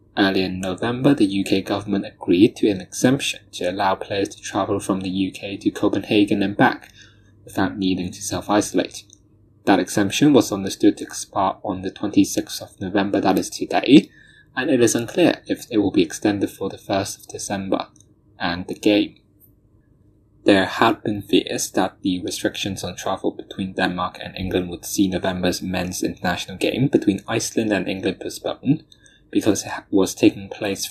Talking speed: 165 wpm